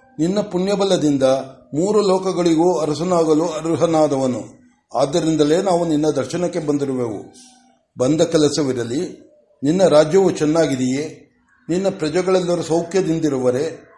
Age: 60-79